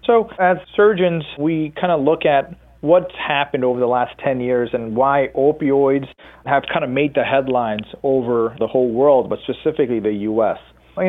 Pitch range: 125-160 Hz